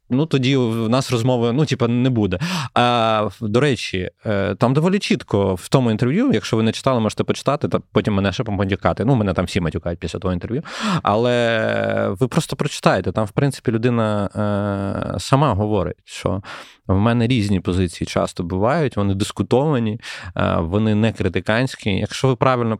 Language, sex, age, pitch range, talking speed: Ukrainian, male, 20-39, 95-125 Hz, 165 wpm